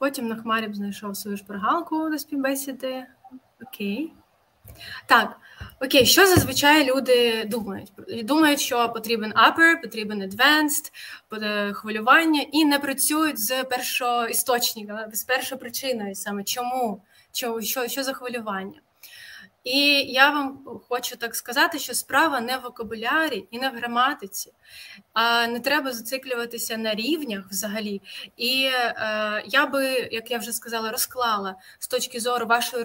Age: 20-39